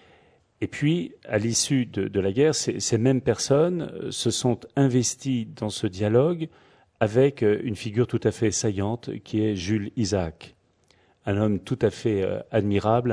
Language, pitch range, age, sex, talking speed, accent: French, 100-125 Hz, 40-59, male, 160 wpm, French